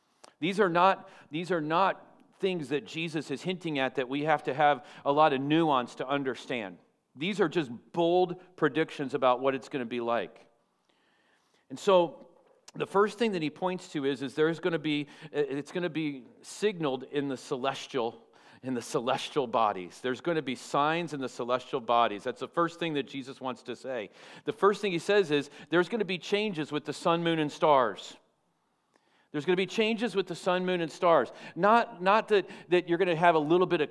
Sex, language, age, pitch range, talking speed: male, English, 40-59, 140-185 Hz, 210 wpm